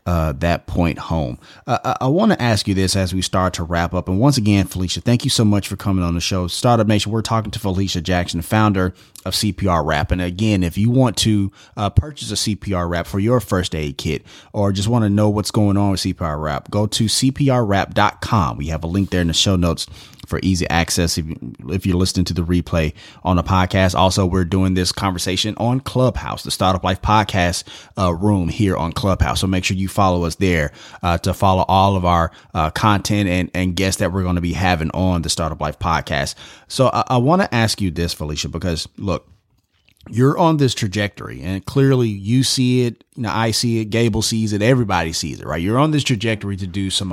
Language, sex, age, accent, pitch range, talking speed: English, male, 30-49, American, 90-110 Hz, 225 wpm